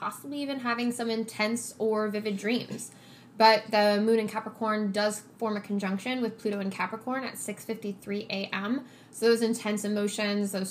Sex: female